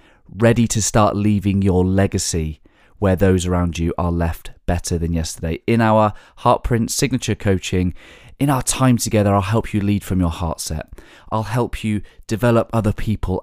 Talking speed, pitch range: 170 wpm, 90-110 Hz